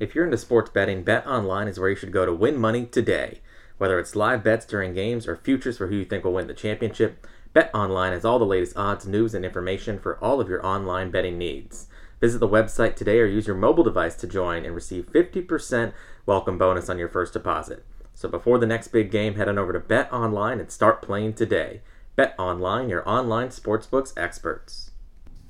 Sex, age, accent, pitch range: male, 30-49, American, 95-115 Hz